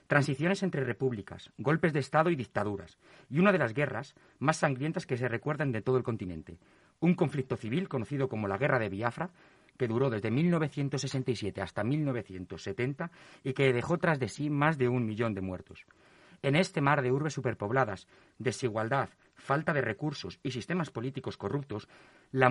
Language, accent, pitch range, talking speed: Spanish, Spanish, 115-155 Hz, 170 wpm